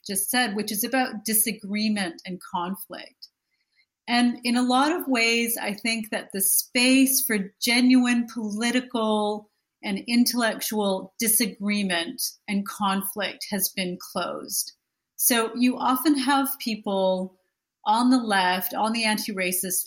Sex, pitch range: female, 200-250 Hz